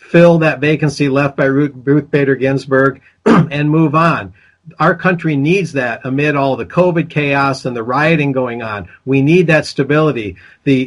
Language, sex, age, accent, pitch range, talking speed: English, male, 50-69, American, 130-160 Hz, 165 wpm